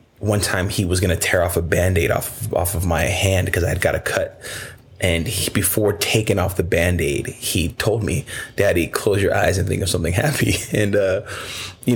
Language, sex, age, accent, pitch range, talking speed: English, male, 30-49, American, 90-115 Hz, 215 wpm